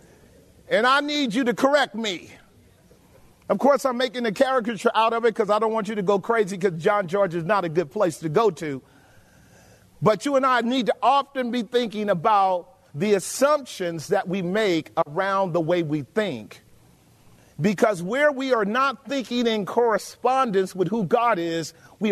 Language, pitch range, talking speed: English, 195-260 Hz, 185 wpm